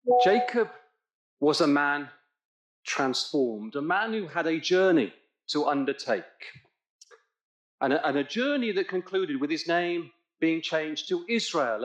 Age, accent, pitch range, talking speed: 40-59, British, 145-230 Hz, 135 wpm